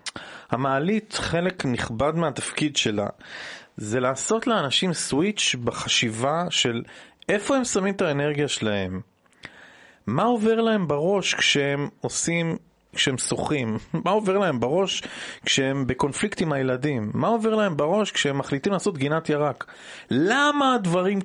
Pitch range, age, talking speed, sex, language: 120-195 Hz, 30-49, 125 wpm, male, Hebrew